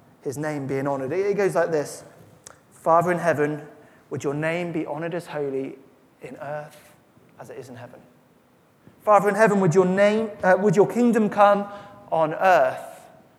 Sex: male